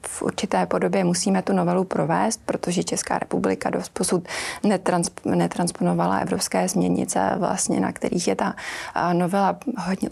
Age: 20-39